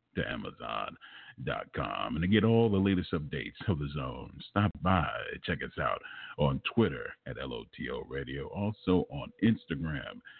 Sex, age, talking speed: male, 50-69, 145 wpm